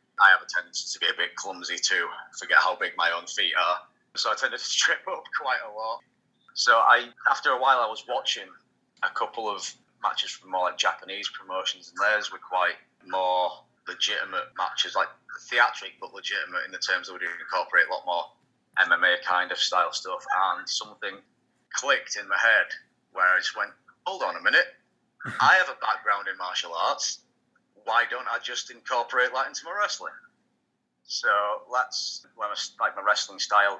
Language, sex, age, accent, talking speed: English, male, 30-49, British, 185 wpm